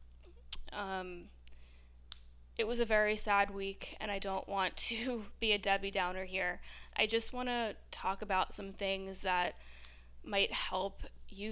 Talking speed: 150 wpm